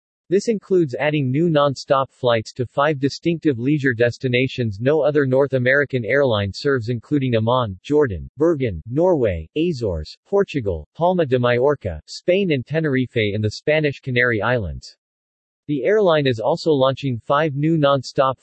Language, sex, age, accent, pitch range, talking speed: English, male, 40-59, American, 120-150 Hz, 140 wpm